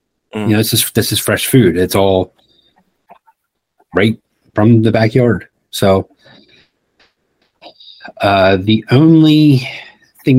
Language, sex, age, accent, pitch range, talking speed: English, male, 40-59, American, 95-120 Hz, 105 wpm